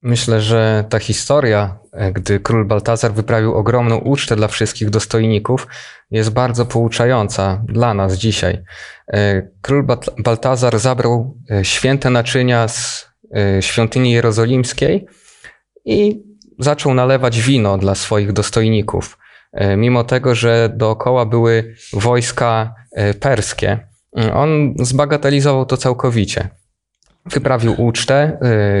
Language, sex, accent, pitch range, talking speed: Polish, male, native, 105-125 Hz, 100 wpm